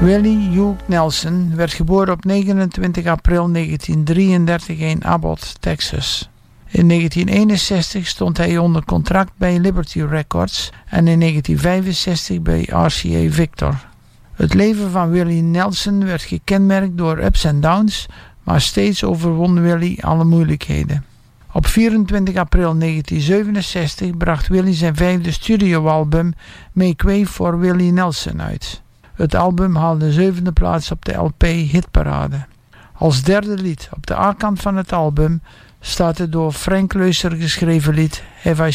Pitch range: 155-185 Hz